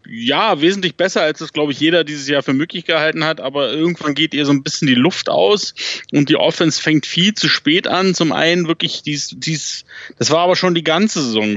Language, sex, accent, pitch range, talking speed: German, male, German, 140-170 Hz, 230 wpm